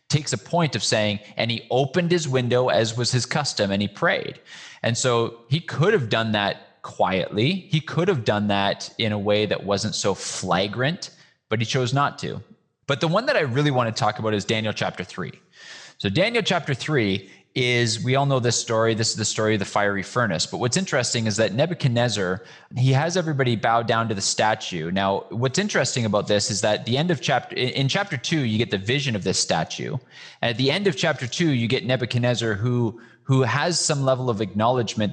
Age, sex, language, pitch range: 20-39, male, English, 100-130 Hz